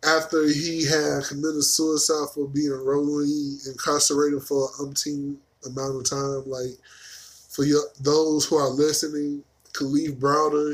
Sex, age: male, 10-29